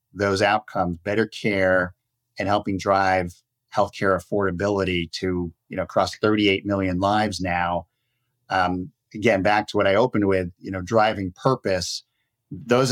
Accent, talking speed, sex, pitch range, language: American, 140 wpm, male, 95-115 Hz, English